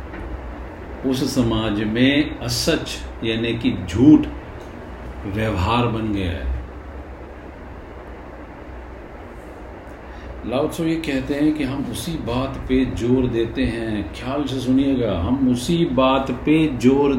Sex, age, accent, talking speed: male, 50-69, native, 100 wpm